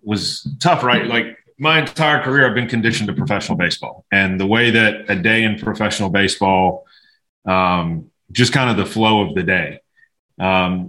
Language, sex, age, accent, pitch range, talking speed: English, male, 30-49, American, 95-120 Hz, 175 wpm